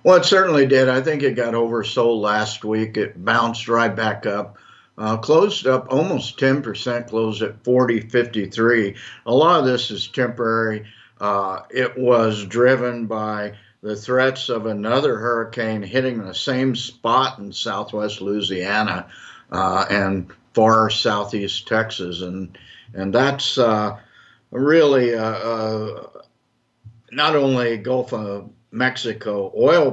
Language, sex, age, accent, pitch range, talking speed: English, male, 60-79, American, 105-125 Hz, 140 wpm